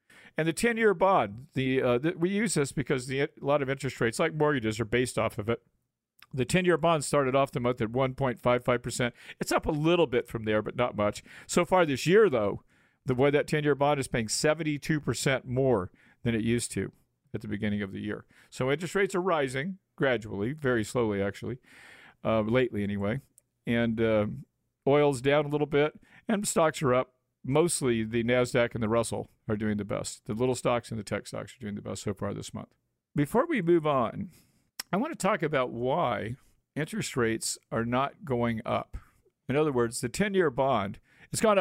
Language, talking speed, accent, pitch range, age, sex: English, 200 wpm, American, 115-155 Hz, 50-69, male